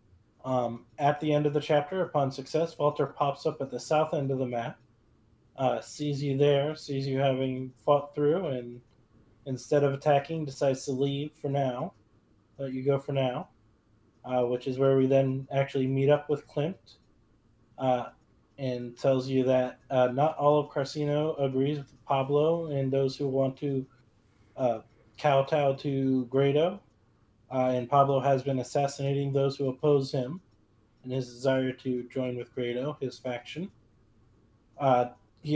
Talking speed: 160 wpm